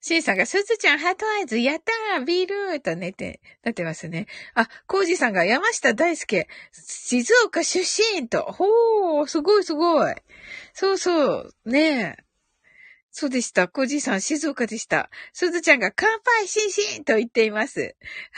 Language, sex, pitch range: Japanese, female, 245-400 Hz